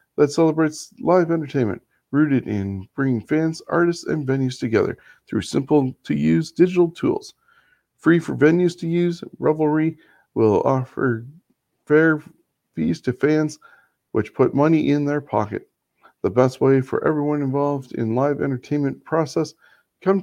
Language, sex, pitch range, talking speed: English, male, 130-160 Hz, 135 wpm